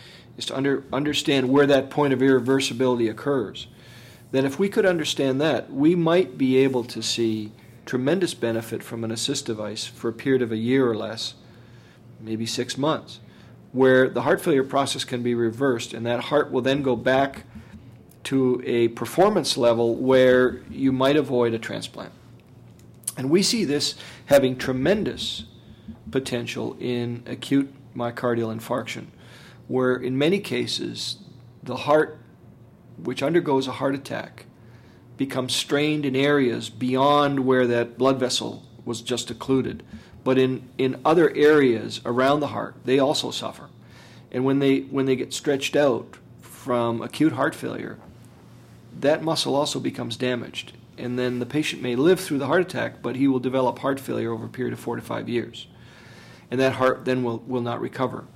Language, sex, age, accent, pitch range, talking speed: English, male, 40-59, American, 120-135 Hz, 160 wpm